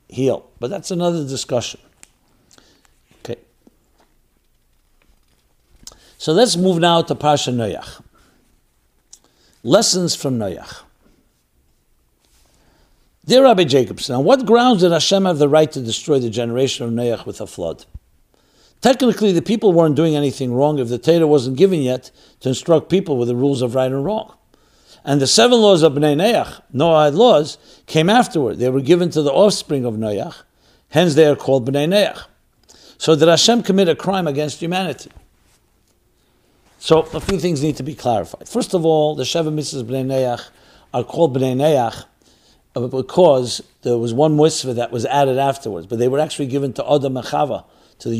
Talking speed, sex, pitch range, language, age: 165 wpm, male, 130-175 Hz, English, 60-79